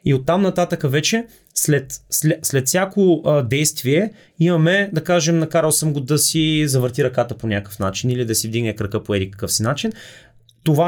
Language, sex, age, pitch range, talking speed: Bulgarian, male, 30-49, 115-155 Hz, 190 wpm